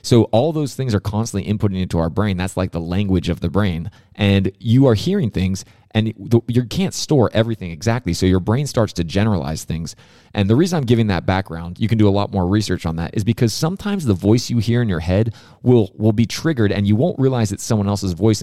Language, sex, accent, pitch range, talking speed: English, male, American, 95-115 Hz, 240 wpm